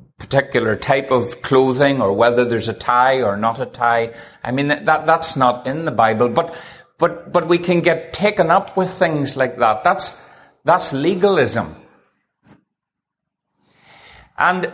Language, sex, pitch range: English, male, 135-185 Hz